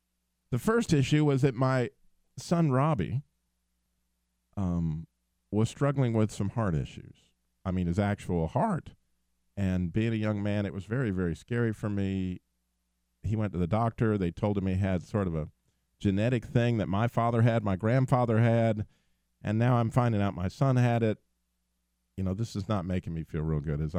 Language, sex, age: English, male, 50-69